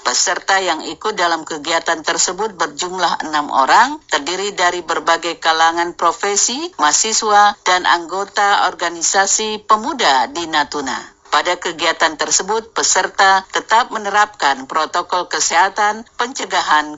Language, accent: Indonesian, native